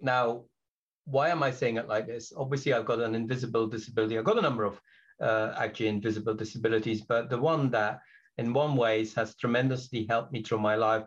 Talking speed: 200 wpm